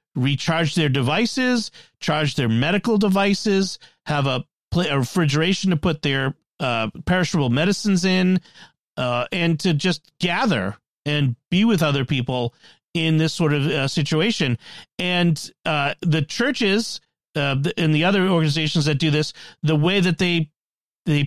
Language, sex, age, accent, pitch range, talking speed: English, male, 40-59, American, 140-185 Hz, 145 wpm